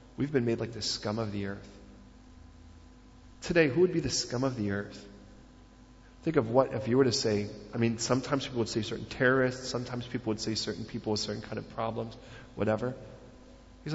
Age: 40-59